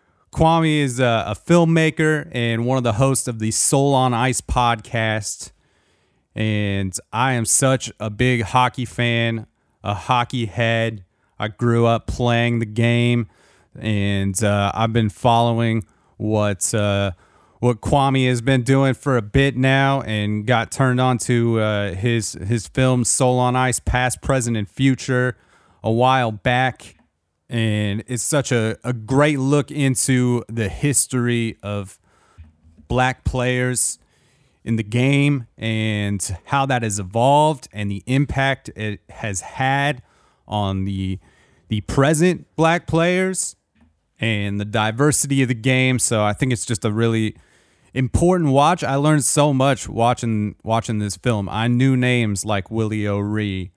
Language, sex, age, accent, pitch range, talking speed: English, male, 30-49, American, 105-130 Hz, 145 wpm